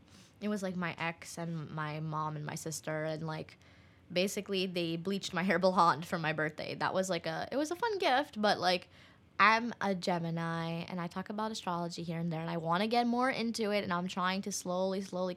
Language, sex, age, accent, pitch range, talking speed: English, female, 10-29, American, 170-215 Hz, 225 wpm